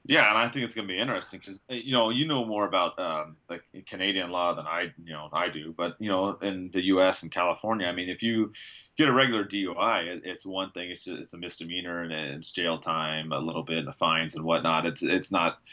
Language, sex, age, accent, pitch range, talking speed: English, male, 30-49, American, 85-105 Hz, 250 wpm